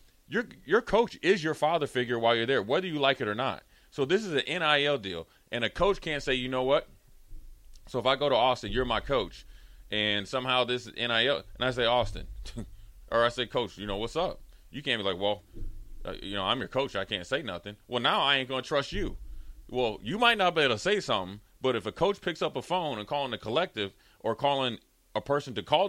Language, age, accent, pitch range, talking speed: English, 30-49, American, 105-135 Hz, 245 wpm